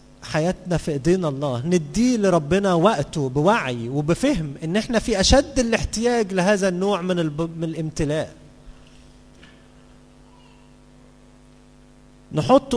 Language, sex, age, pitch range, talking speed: Arabic, male, 40-59, 140-190 Hz, 95 wpm